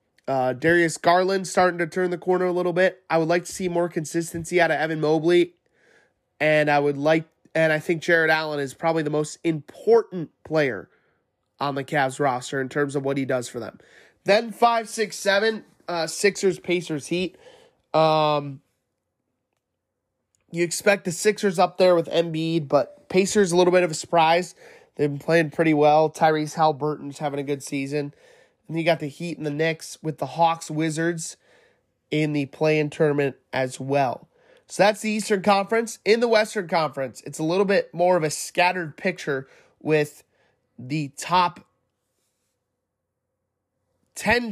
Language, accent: English, American